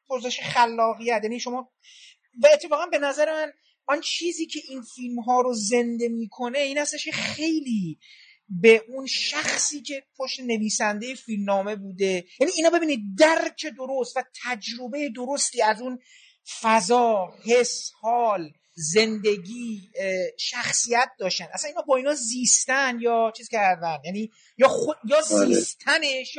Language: Persian